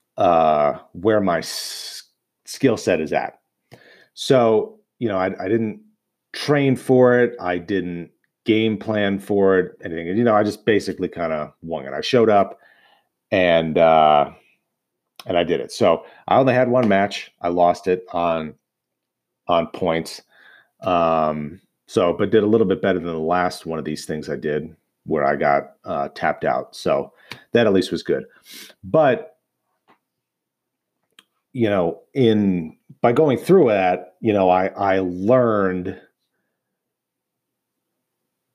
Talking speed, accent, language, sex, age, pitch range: 150 wpm, American, English, male, 30-49, 85-110 Hz